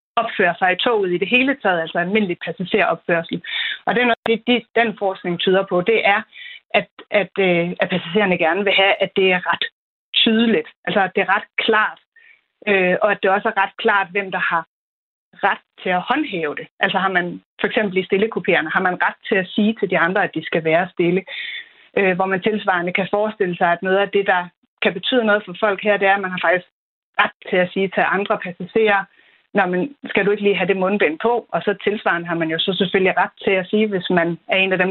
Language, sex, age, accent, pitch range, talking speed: Danish, female, 30-49, native, 180-220 Hz, 230 wpm